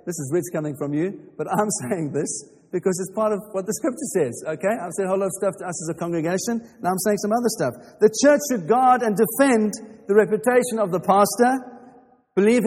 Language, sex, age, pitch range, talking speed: English, male, 50-69, 185-245 Hz, 230 wpm